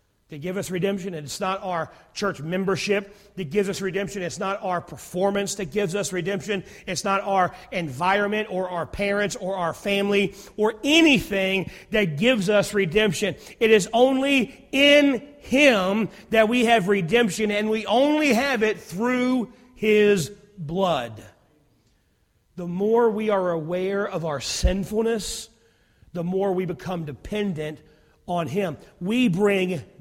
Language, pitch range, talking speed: English, 165-205 Hz, 145 wpm